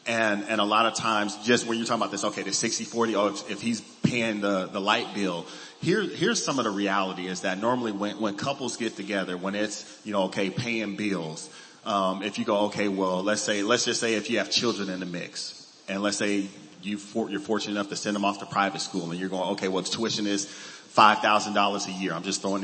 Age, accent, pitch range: 30-49, American, 100-110 Hz